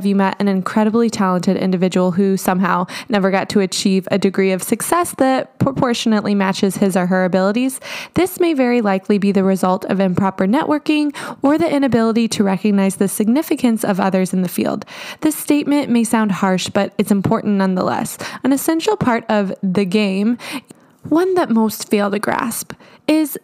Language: English